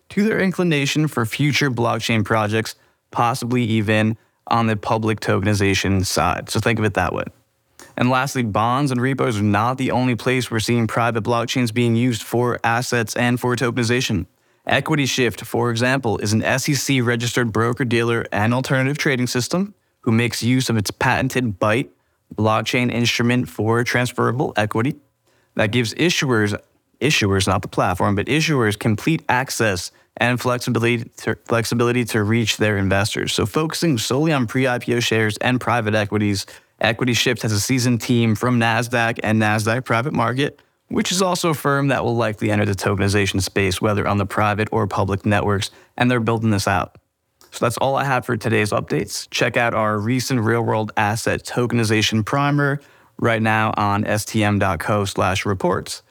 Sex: male